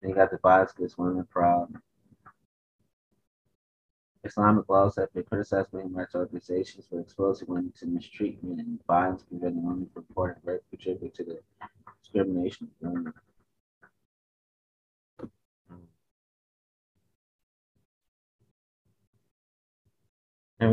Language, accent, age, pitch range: English, American, 30-49, 90-105 Hz